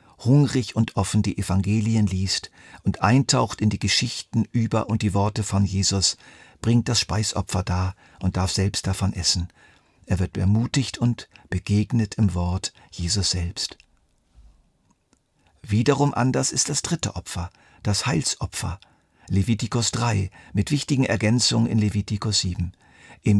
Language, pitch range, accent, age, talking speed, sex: German, 95-120 Hz, German, 50-69, 135 wpm, male